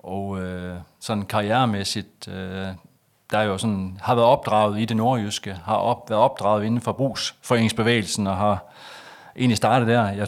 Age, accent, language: 30-49, native, Danish